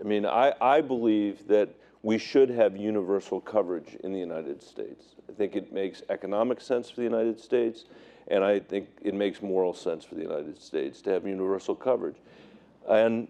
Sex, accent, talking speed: male, American, 185 wpm